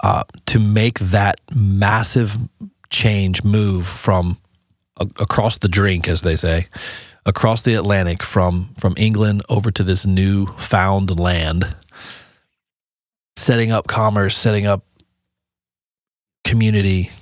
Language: English